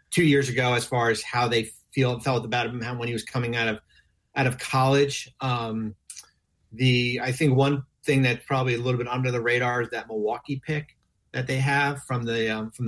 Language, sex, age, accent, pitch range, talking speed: English, male, 30-49, American, 120-140 Hz, 215 wpm